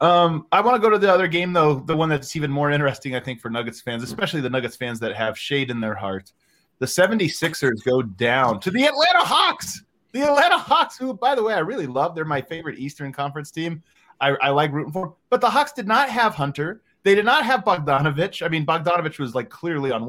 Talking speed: 240 wpm